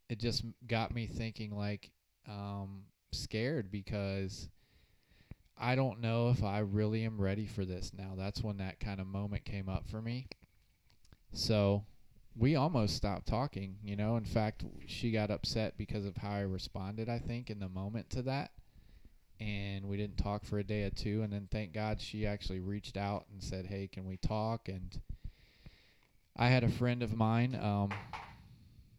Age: 20-39